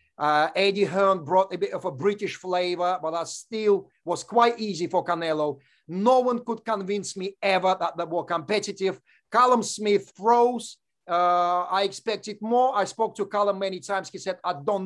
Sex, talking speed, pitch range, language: male, 180 wpm, 185-245 Hz, English